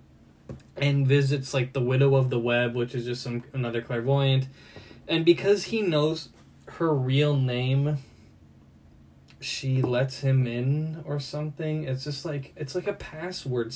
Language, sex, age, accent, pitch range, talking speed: English, male, 20-39, American, 125-150 Hz, 150 wpm